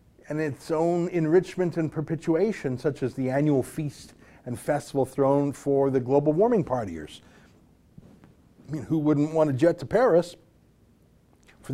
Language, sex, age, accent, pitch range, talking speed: English, male, 50-69, American, 125-170 Hz, 150 wpm